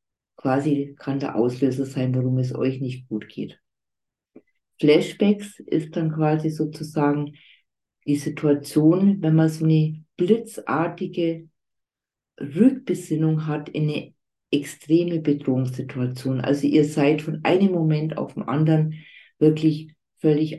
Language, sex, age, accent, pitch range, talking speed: German, female, 40-59, German, 145-165 Hz, 115 wpm